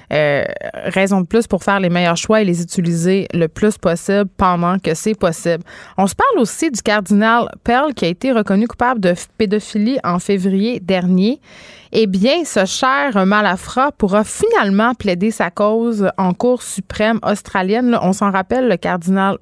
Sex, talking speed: female, 175 wpm